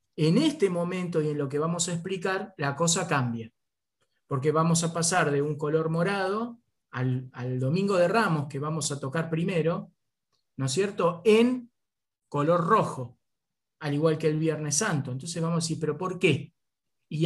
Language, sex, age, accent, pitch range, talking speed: Spanish, male, 20-39, Argentinian, 150-195 Hz, 175 wpm